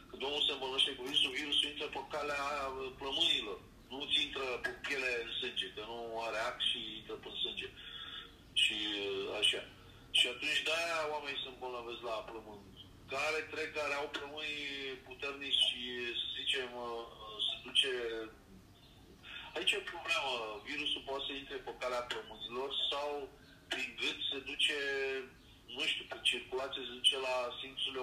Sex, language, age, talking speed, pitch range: male, Romanian, 40-59, 145 wpm, 120-155 Hz